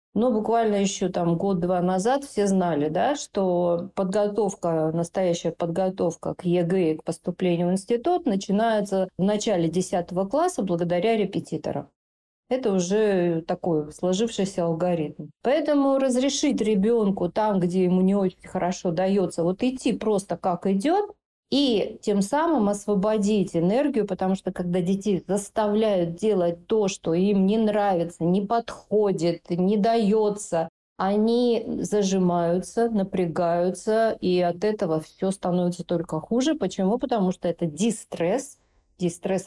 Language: Russian